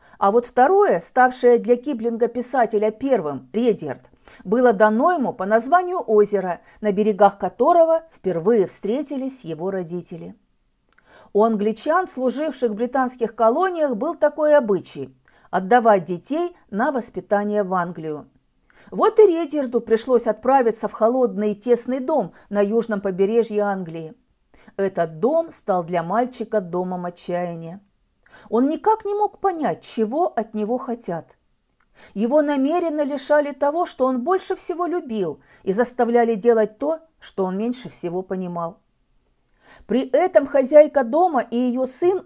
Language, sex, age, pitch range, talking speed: Russian, female, 40-59, 200-290 Hz, 130 wpm